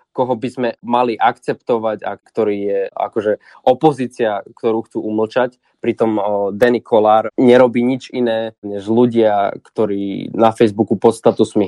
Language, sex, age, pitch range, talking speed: Slovak, male, 20-39, 110-125 Hz, 135 wpm